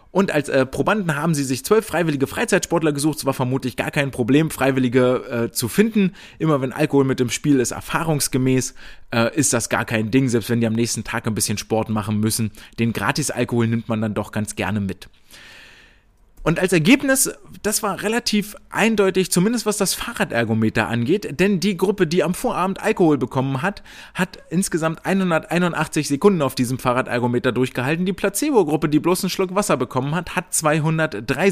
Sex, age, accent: male, 30-49, German